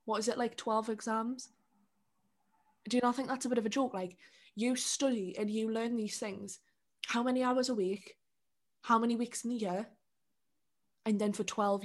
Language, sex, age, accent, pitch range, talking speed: English, female, 20-39, British, 200-250 Hz, 200 wpm